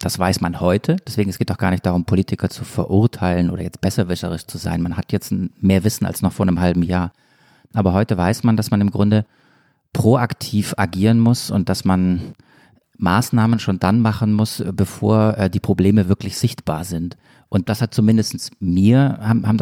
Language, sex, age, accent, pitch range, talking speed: German, male, 40-59, German, 95-115 Hz, 185 wpm